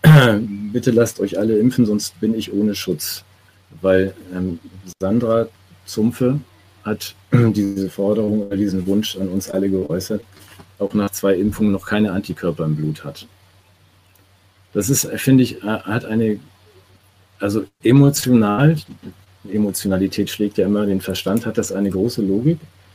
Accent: German